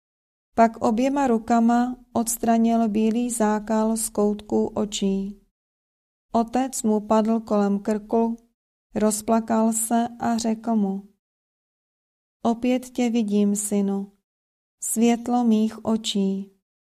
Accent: native